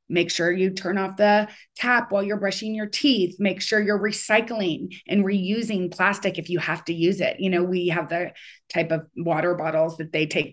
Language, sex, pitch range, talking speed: English, female, 160-195 Hz, 210 wpm